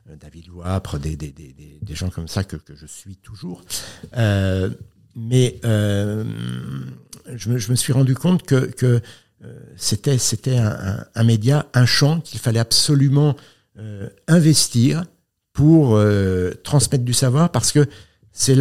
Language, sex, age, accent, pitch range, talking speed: French, male, 60-79, French, 90-120 Hz, 155 wpm